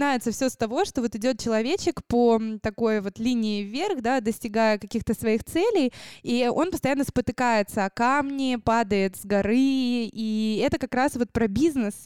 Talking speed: 165 wpm